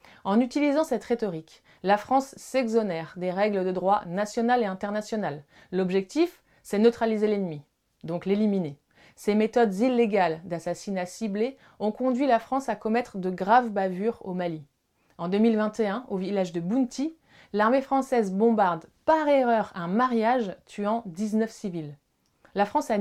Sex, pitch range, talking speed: female, 175-230 Hz, 145 wpm